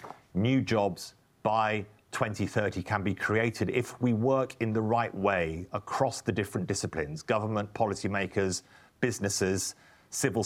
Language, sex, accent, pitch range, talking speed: English, male, British, 95-120 Hz, 125 wpm